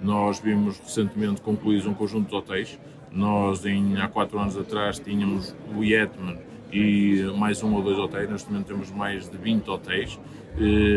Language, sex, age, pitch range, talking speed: Portuguese, male, 20-39, 100-115 Hz, 170 wpm